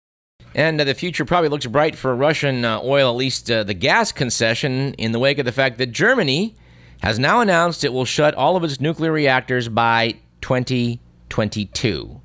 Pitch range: 100-130 Hz